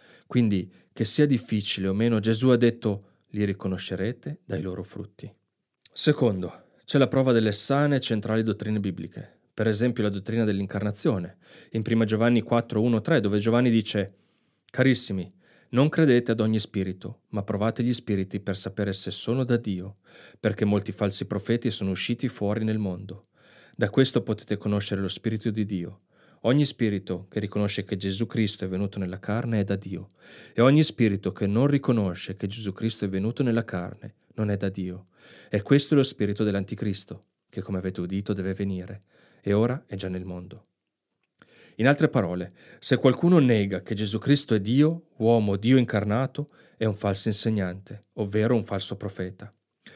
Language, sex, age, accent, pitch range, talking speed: Italian, male, 30-49, native, 100-120 Hz, 170 wpm